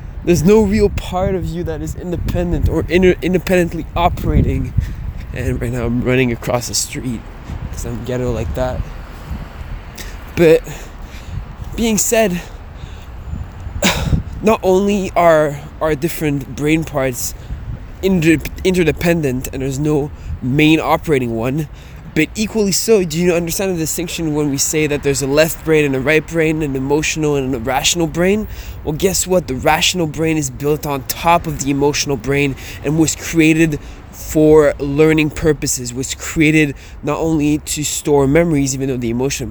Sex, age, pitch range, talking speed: male, 20-39, 125-165 Hz, 150 wpm